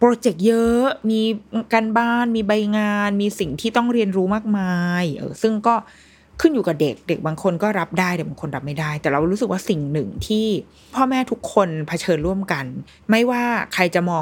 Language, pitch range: Thai, 160-220 Hz